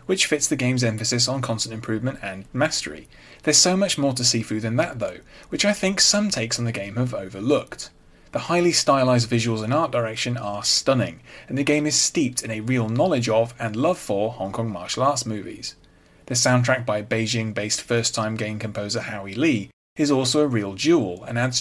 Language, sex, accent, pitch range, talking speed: English, male, British, 110-145 Hz, 200 wpm